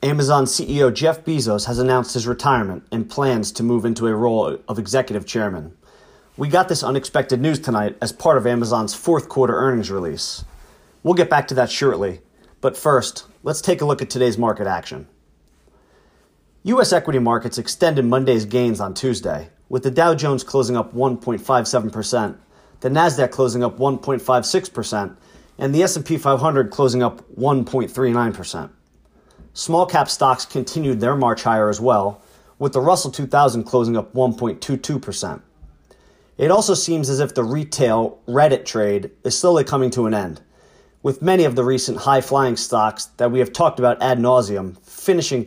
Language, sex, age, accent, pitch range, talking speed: English, male, 30-49, American, 115-140 Hz, 160 wpm